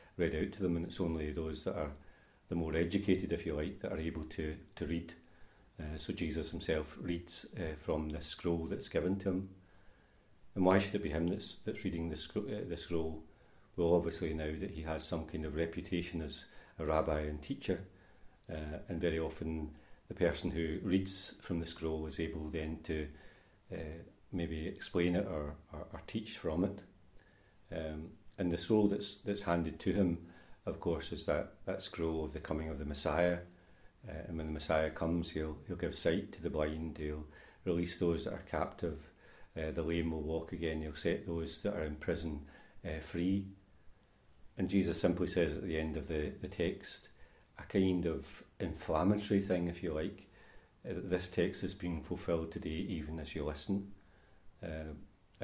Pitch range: 80-95 Hz